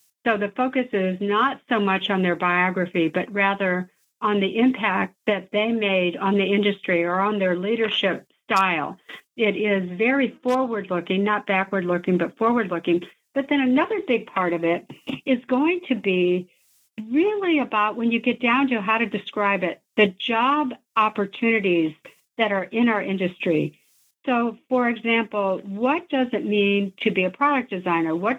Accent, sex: American, female